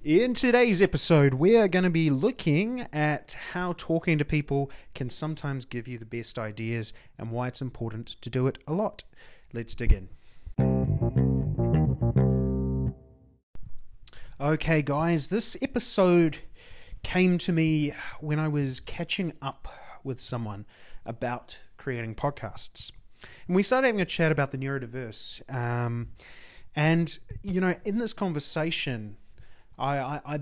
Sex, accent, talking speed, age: male, Australian, 135 wpm, 30-49